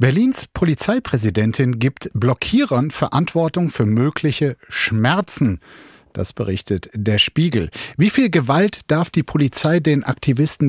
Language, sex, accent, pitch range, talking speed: German, male, German, 115-155 Hz, 110 wpm